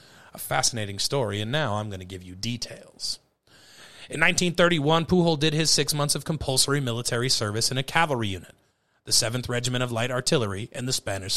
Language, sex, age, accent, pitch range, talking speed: English, male, 30-49, American, 110-145 Hz, 185 wpm